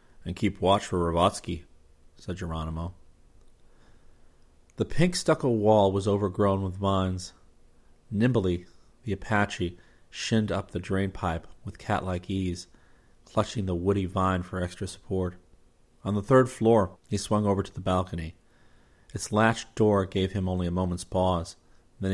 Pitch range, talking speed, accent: 90-100 Hz, 140 wpm, American